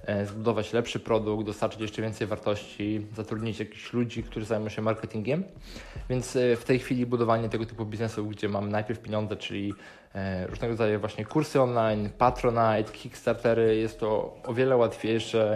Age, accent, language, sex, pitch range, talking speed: 20-39, native, Polish, male, 110-125 Hz, 150 wpm